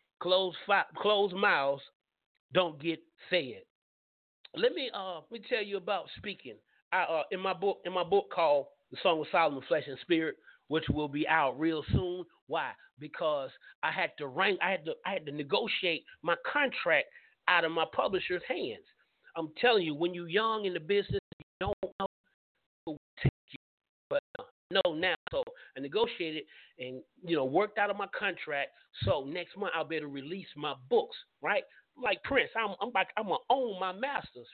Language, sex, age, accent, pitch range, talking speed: English, male, 30-49, American, 165-240 Hz, 195 wpm